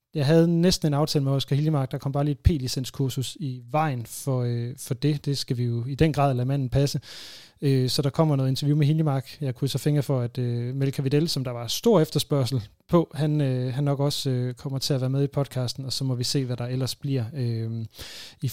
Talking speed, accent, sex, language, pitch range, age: 245 wpm, native, male, Danish, 125-145 Hz, 30-49